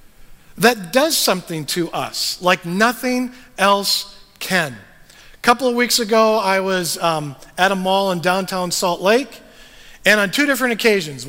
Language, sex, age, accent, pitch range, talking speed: English, male, 40-59, American, 180-225 Hz, 155 wpm